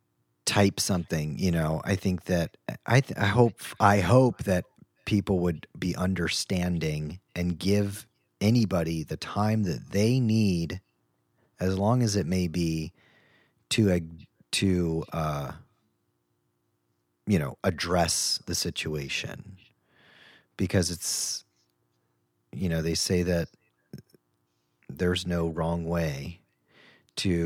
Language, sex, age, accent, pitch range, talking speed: English, male, 30-49, American, 75-100 Hz, 115 wpm